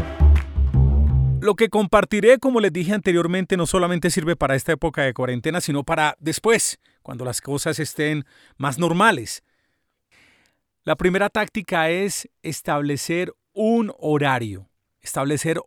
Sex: male